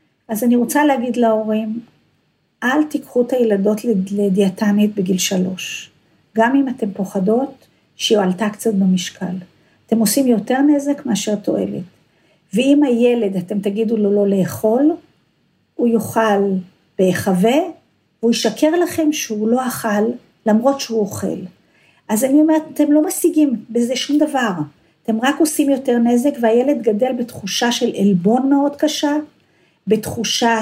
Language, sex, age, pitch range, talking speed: Hebrew, female, 50-69, 210-275 Hz, 130 wpm